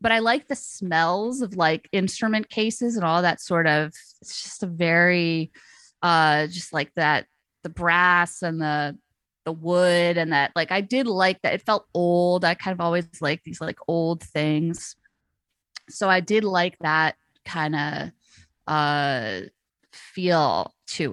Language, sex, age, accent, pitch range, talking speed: English, female, 20-39, American, 160-200 Hz, 160 wpm